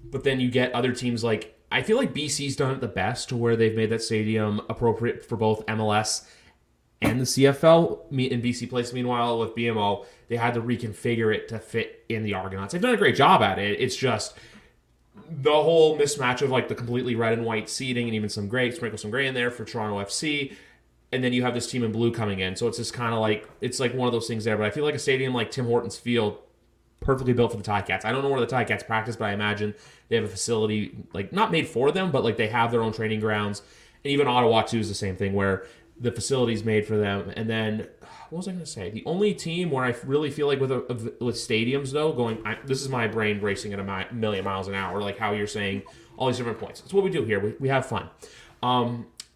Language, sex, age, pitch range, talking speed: English, male, 30-49, 110-130 Hz, 255 wpm